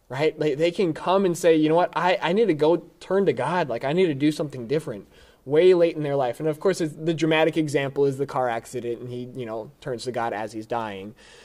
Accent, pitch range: American, 130-170 Hz